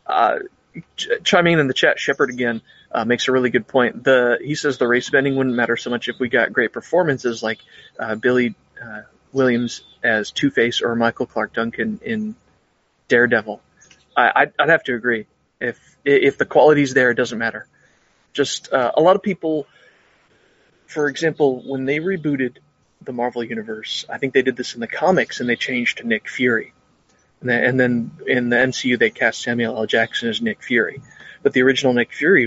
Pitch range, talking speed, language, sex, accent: 115-140 Hz, 190 wpm, English, male, American